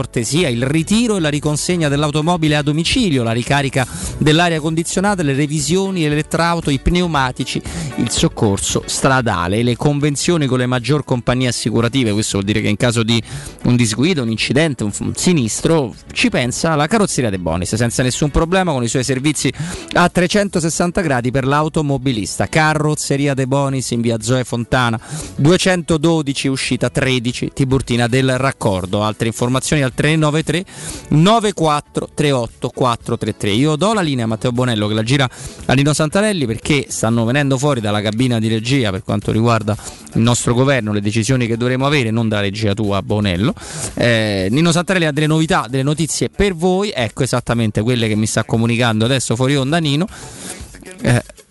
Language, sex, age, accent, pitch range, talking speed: Italian, male, 30-49, native, 115-155 Hz, 155 wpm